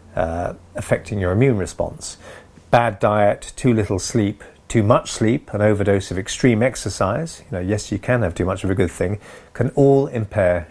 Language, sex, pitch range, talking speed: English, male, 95-125 Hz, 185 wpm